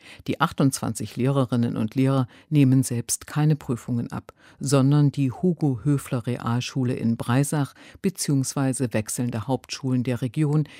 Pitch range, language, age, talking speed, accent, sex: 125-150 Hz, German, 50-69, 110 wpm, German, female